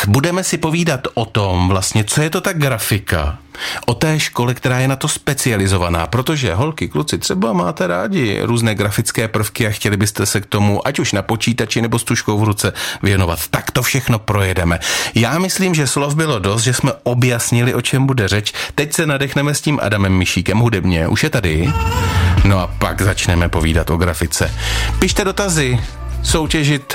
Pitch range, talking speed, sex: 95-130 Hz, 185 wpm, male